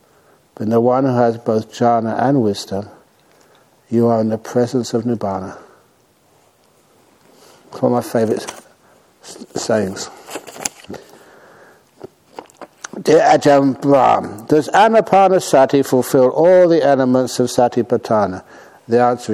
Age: 60-79